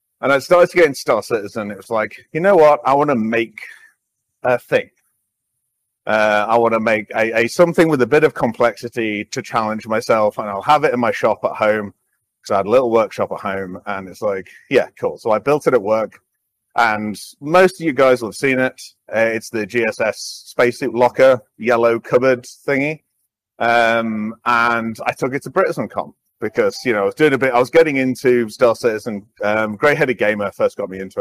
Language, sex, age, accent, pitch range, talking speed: English, male, 30-49, British, 110-140 Hz, 215 wpm